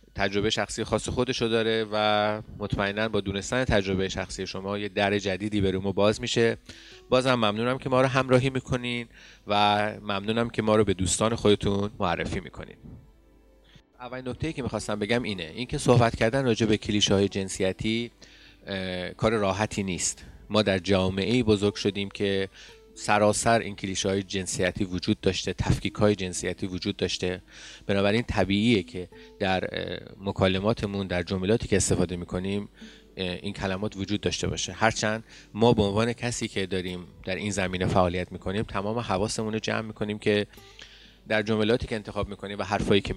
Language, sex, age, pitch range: Persian, male, 30-49, 95-110 Hz